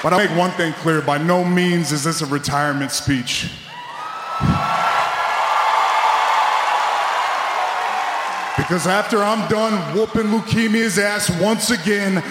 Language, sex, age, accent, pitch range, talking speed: English, male, 30-49, American, 175-210 Hz, 110 wpm